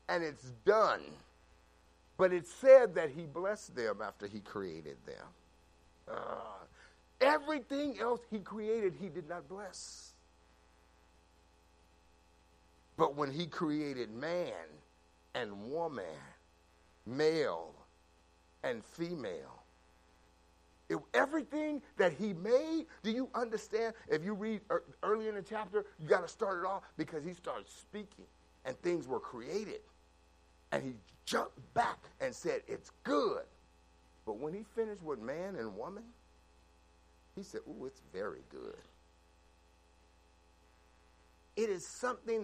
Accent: American